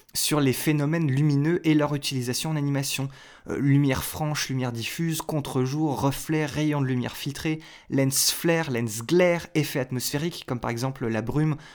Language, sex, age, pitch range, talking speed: French, male, 20-39, 125-155 Hz, 160 wpm